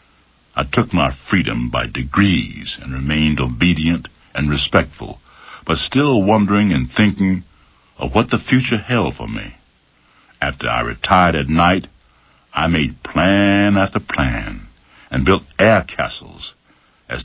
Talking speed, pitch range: 130 wpm, 70-95 Hz